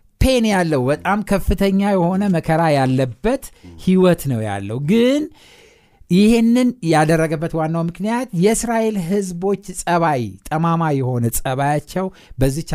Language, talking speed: Amharic, 105 wpm